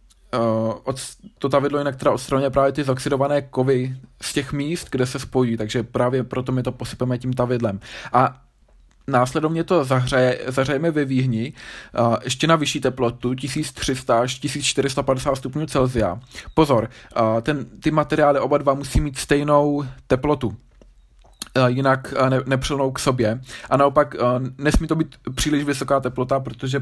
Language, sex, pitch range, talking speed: Czech, male, 125-145 Hz, 145 wpm